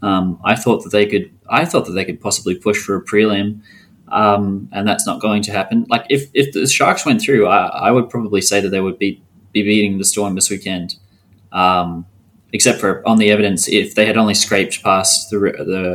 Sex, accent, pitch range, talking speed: male, Australian, 100-115 Hz, 220 wpm